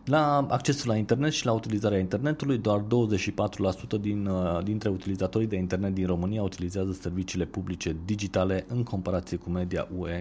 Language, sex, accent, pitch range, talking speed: Romanian, male, native, 85-105 Hz, 145 wpm